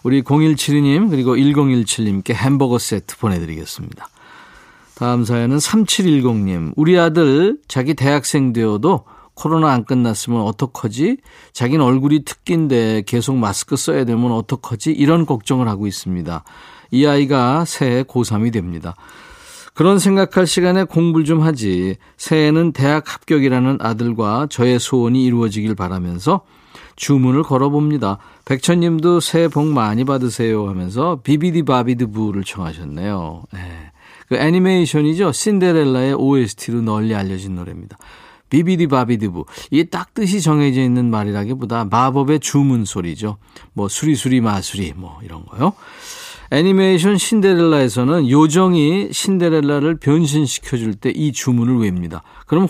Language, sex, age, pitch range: Korean, male, 40-59, 110-155 Hz